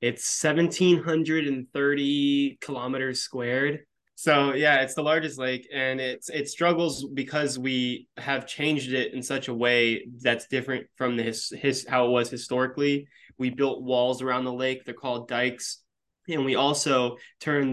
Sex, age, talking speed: male, 20-39, 155 wpm